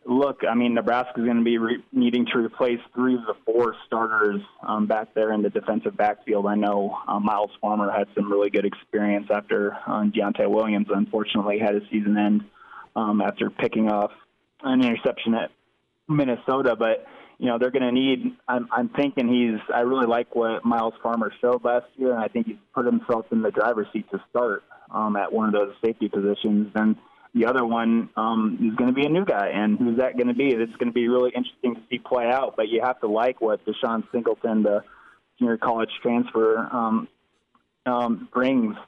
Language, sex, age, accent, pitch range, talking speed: English, male, 20-39, American, 110-125 Hz, 205 wpm